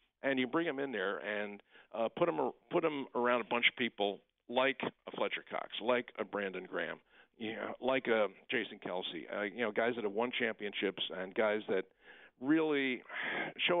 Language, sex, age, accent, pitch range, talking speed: English, male, 50-69, American, 110-135 Hz, 185 wpm